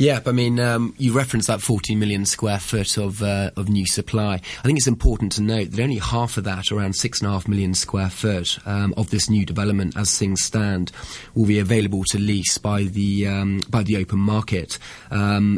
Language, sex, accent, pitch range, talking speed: English, male, British, 100-110 Hz, 205 wpm